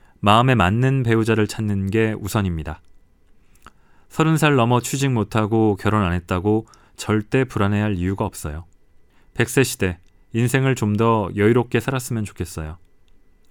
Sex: male